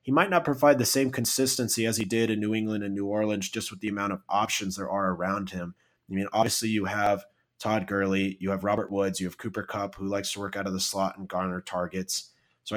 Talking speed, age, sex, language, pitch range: 250 wpm, 30-49, male, English, 95-120 Hz